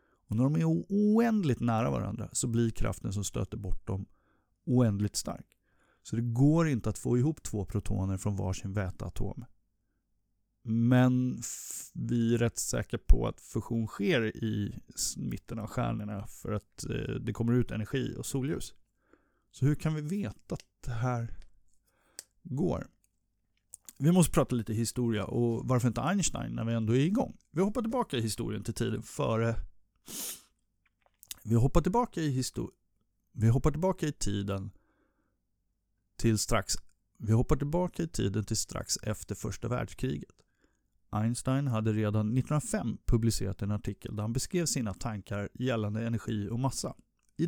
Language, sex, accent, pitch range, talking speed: Swedish, male, native, 105-130 Hz, 140 wpm